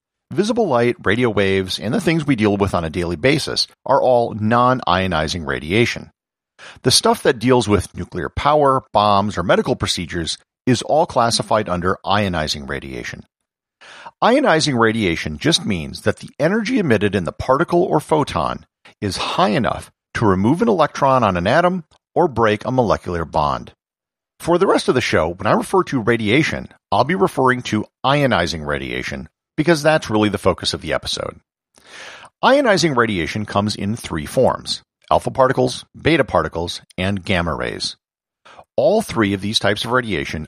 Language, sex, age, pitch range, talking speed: English, male, 50-69, 90-130 Hz, 160 wpm